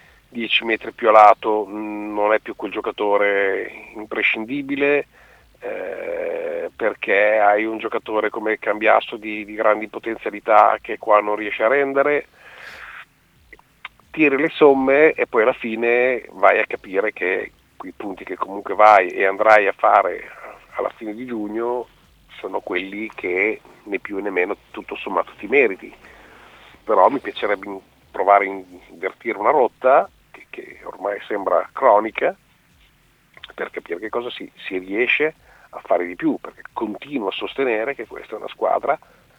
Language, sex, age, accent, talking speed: Italian, male, 40-59, native, 145 wpm